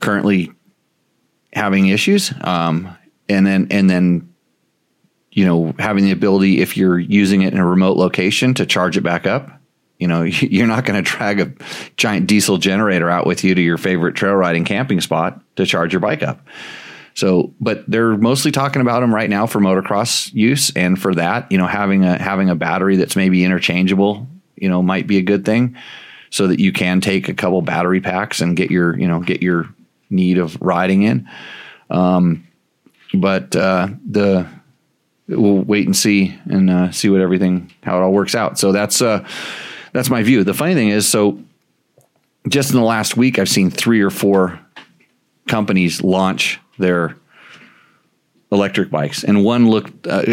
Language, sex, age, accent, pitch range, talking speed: English, male, 30-49, American, 90-105 Hz, 180 wpm